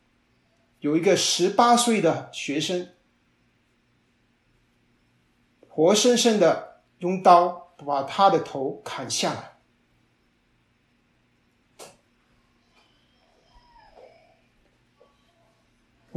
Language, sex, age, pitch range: Chinese, male, 50-69, 145-220 Hz